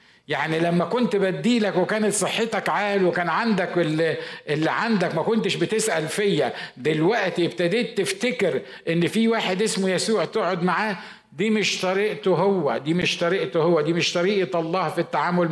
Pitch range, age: 135-195 Hz, 50-69